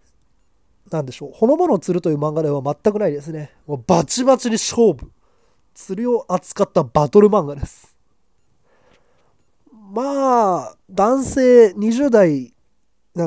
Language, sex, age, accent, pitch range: Japanese, male, 20-39, native, 155-245 Hz